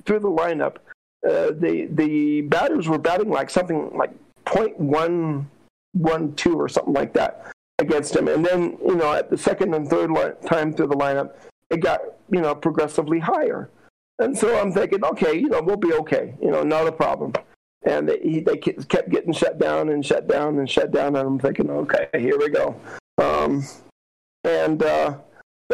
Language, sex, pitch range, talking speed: English, male, 140-175 Hz, 180 wpm